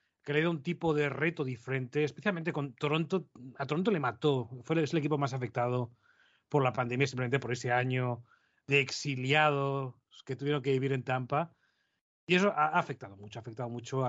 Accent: Spanish